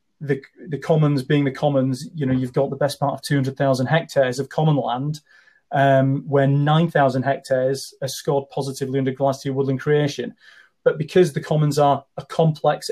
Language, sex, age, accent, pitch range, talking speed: English, male, 30-49, British, 135-155 Hz, 170 wpm